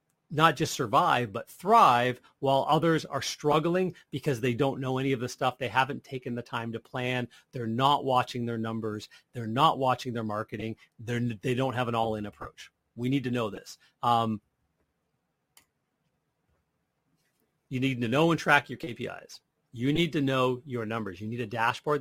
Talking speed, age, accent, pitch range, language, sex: 175 wpm, 40-59, American, 115-145 Hz, English, male